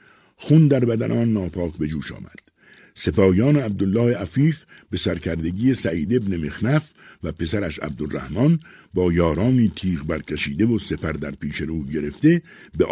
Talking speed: 140 wpm